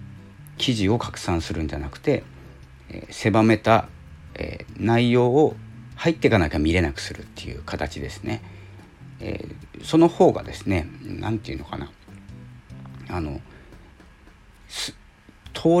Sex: male